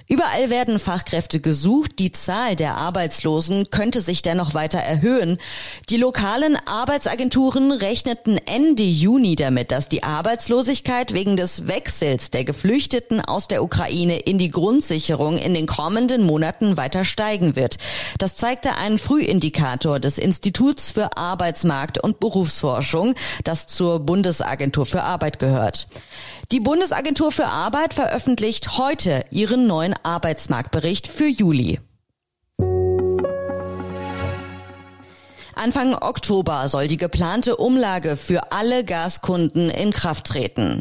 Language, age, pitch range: German, 30-49, 155-225 Hz